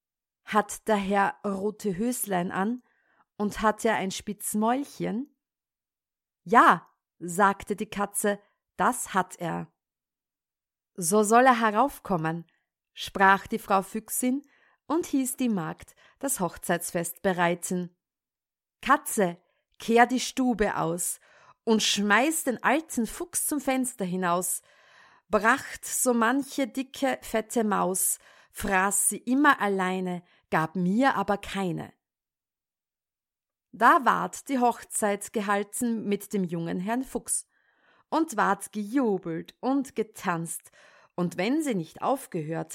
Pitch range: 185-250 Hz